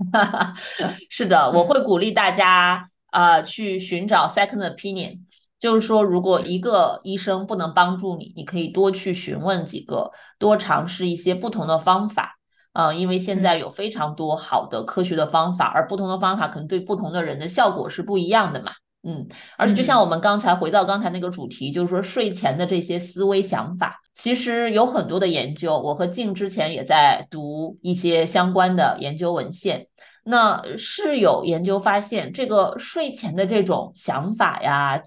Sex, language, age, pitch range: female, Chinese, 20-39, 175-210 Hz